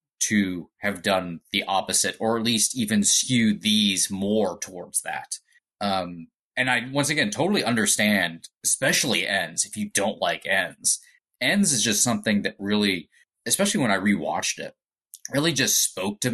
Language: English